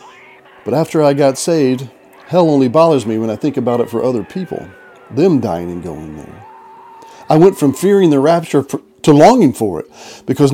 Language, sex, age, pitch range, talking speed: English, male, 40-59, 110-140 Hz, 190 wpm